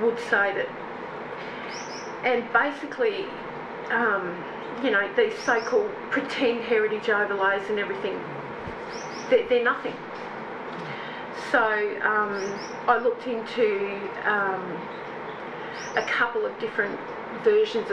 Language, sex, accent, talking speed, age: English, female, Australian, 95 wpm, 40-59